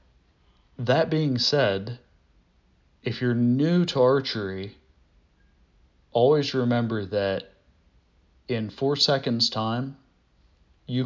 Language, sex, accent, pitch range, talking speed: English, male, American, 100-125 Hz, 85 wpm